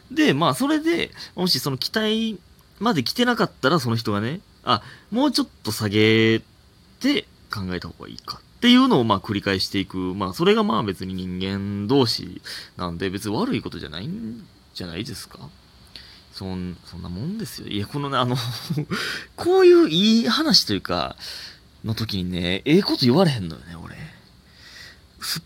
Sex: male